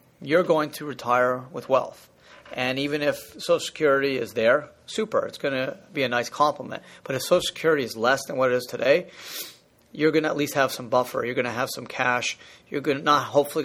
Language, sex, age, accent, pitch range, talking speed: English, male, 30-49, American, 125-150 Hz, 220 wpm